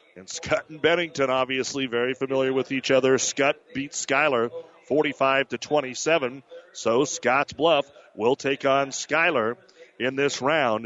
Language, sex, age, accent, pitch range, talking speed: English, male, 40-59, American, 120-140 Hz, 145 wpm